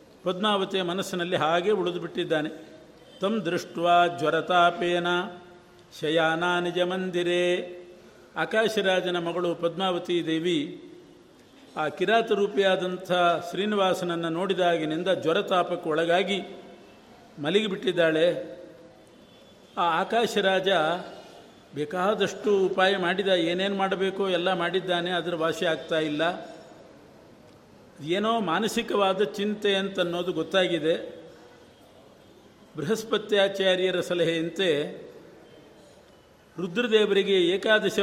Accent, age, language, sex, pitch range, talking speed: native, 50-69, Kannada, male, 170-195 Hz, 65 wpm